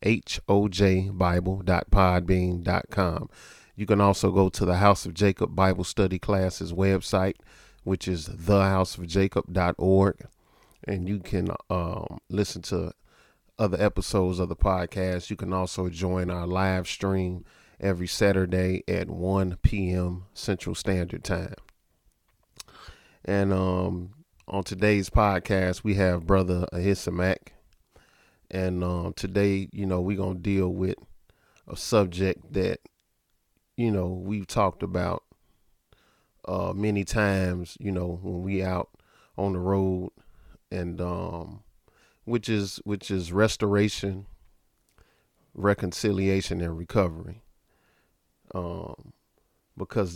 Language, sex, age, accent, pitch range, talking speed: English, male, 30-49, American, 90-100 Hz, 110 wpm